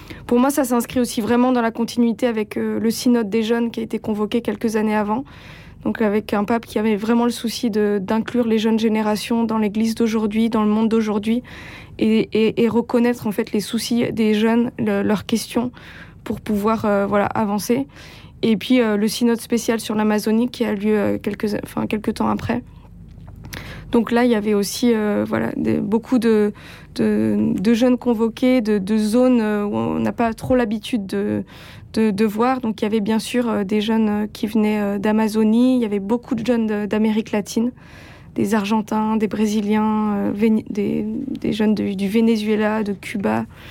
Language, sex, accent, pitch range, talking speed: French, female, French, 210-235 Hz, 190 wpm